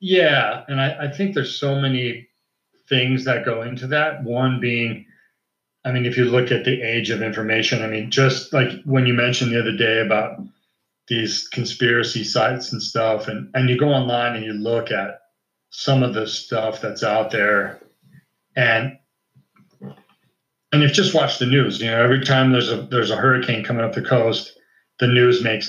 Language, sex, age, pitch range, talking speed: English, male, 40-59, 115-135 Hz, 185 wpm